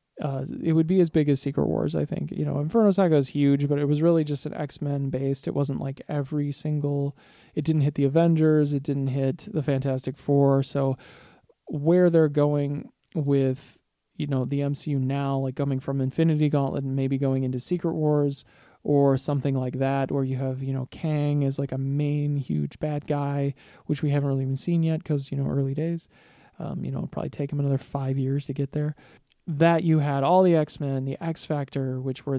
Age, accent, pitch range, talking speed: 20-39, American, 135-155 Hz, 210 wpm